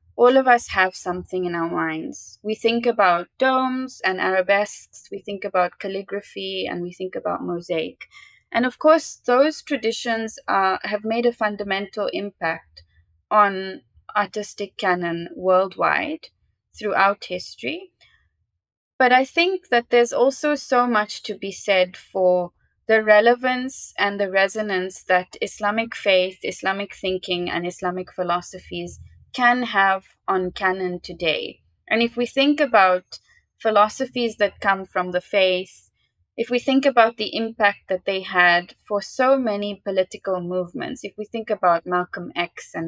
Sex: female